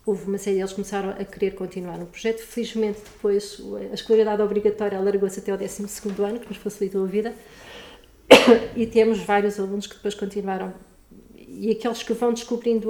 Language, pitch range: Portuguese, 185-215 Hz